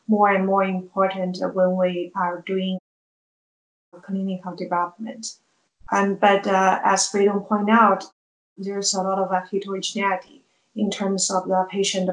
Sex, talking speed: female, 140 wpm